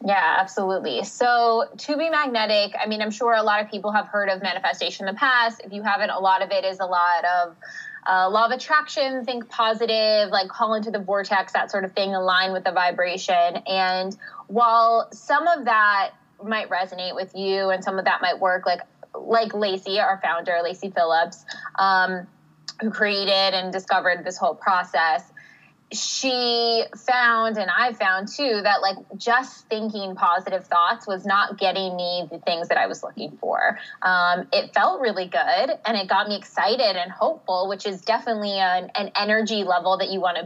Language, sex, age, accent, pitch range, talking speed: English, female, 20-39, American, 185-225 Hz, 190 wpm